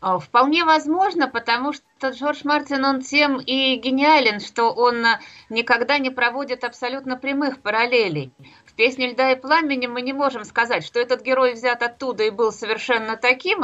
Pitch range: 180-240 Hz